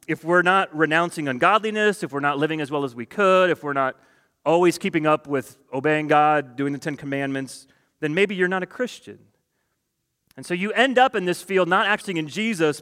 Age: 30-49